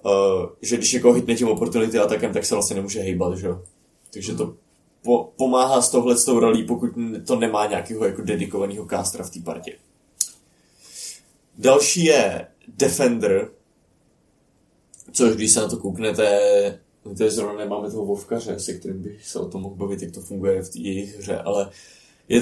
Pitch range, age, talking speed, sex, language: 105-125 Hz, 20-39, 170 wpm, male, Czech